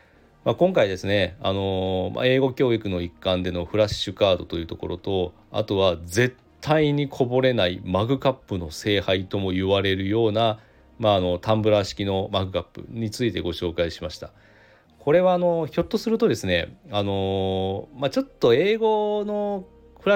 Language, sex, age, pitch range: Japanese, male, 40-59, 90-140 Hz